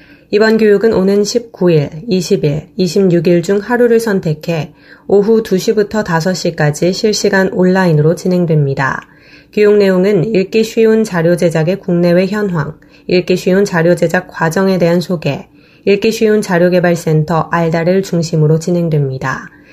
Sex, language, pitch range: female, Korean, 165-195 Hz